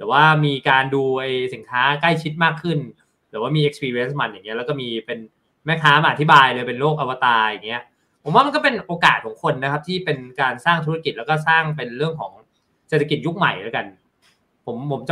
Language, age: Thai, 20-39